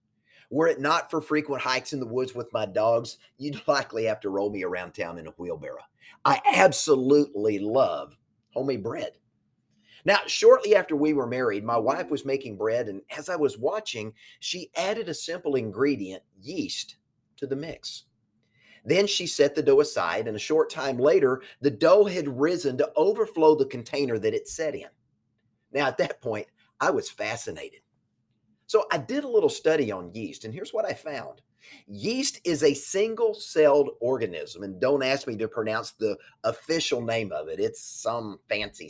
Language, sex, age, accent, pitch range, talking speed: English, male, 30-49, American, 130-215 Hz, 180 wpm